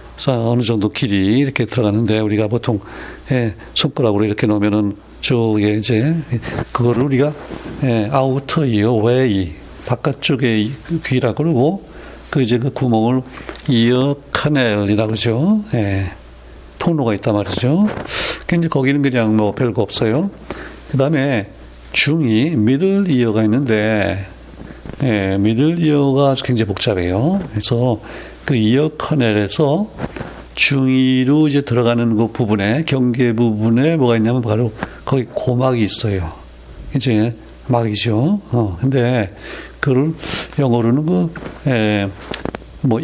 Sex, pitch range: male, 105-140 Hz